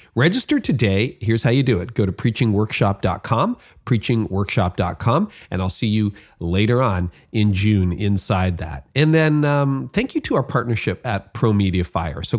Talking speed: 160 wpm